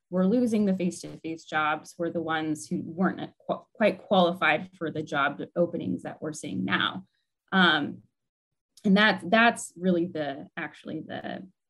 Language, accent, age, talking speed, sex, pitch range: English, American, 20-39, 145 wpm, female, 160-180 Hz